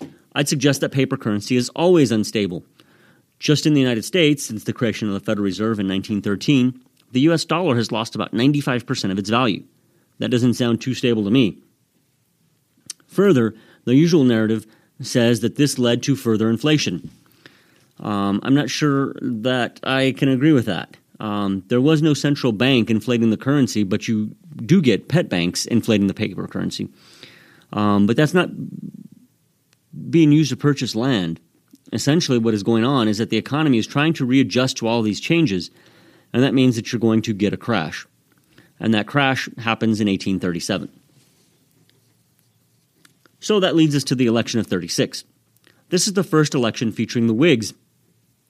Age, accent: 30-49, American